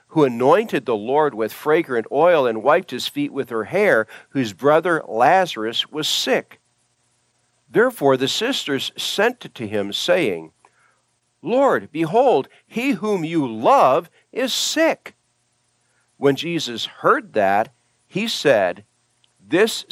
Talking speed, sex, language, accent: 125 wpm, male, English, American